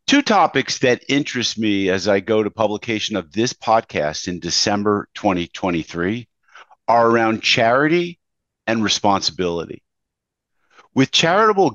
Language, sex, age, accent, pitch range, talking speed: English, male, 50-69, American, 105-135 Hz, 115 wpm